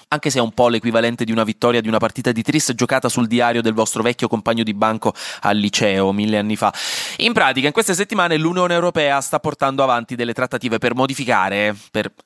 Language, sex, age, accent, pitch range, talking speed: Italian, male, 20-39, native, 110-150 Hz, 210 wpm